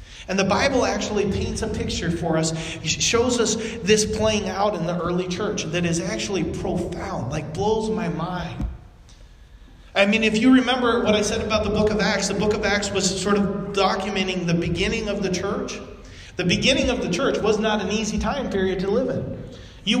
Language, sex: English, male